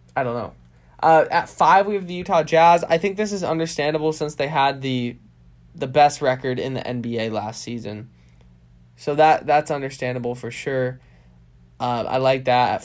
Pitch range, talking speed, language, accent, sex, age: 110-145 Hz, 180 wpm, English, American, male, 10-29